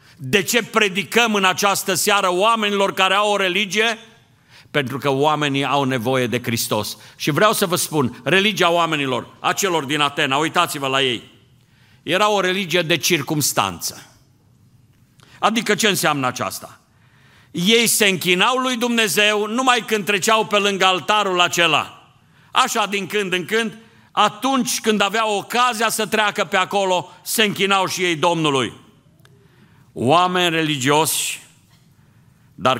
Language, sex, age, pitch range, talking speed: Romanian, male, 50-69, 130-195 Hz, 135 wpm